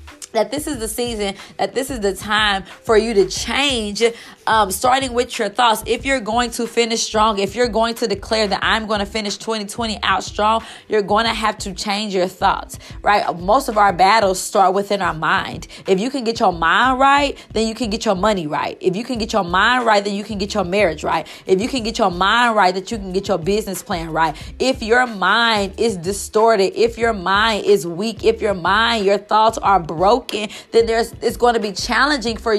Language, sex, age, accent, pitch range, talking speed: English, female, 20-39, American, 200-240 Hz, 225 wpm